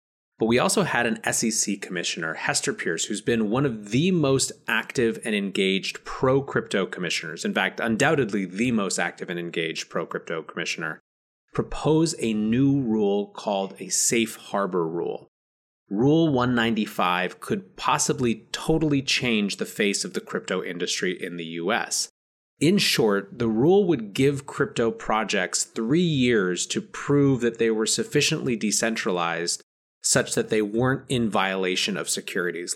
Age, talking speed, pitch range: 30-49, 150 wpm, 100-130 Hz